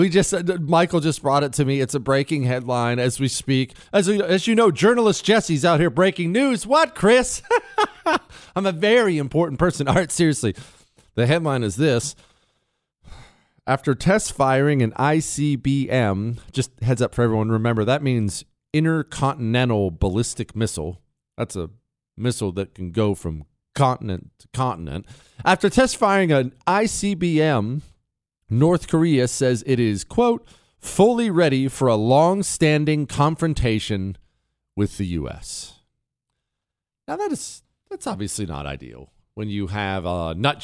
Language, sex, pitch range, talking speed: English, male, 105-155 Hz, 145 wpm